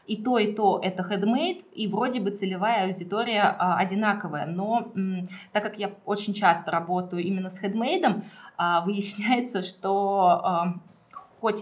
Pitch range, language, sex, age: 180-215 Hz, Russian, female, 20-39